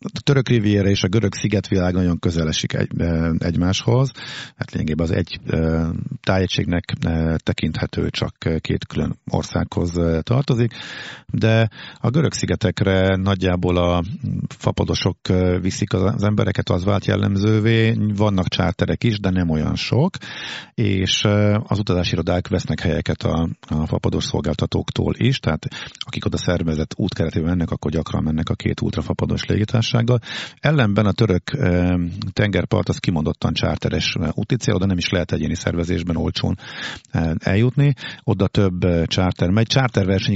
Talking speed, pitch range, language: 130 wpm, 85-110 Hz, Hungarian